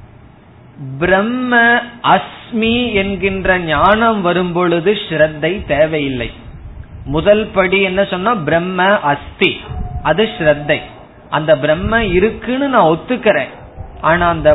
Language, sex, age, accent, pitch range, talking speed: Tamil, male, 20-39, native, 150-195 Hz, 60 wpm